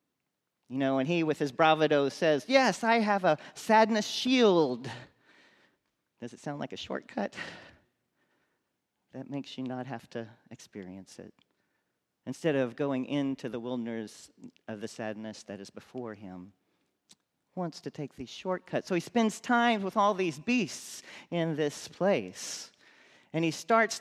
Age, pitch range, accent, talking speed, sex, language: 40-59, 125-205 Hz, American, 150 wpm, male, English